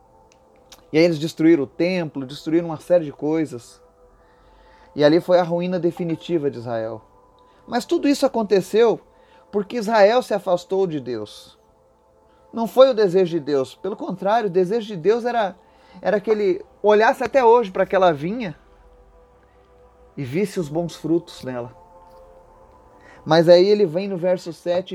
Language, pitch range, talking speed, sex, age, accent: Portuguese, 145-195 Hz, 155 wpm, male, 30-49, Brazilian